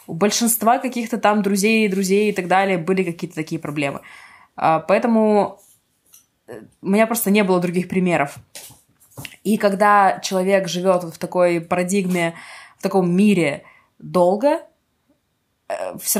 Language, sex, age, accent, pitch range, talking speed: Russian, female, 20-39, native, 170-215 Hz, 125 wpm